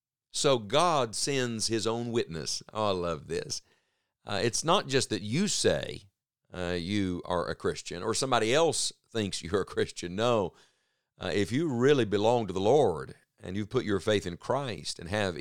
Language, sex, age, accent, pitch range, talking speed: English, male, 50-69, American, 100-135 Hz, 185 wpm